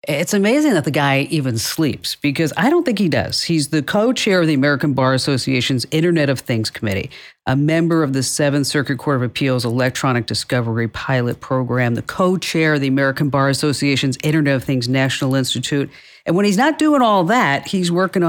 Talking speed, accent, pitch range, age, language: 195 wpm, American, 135-185 Hz, 50-69, English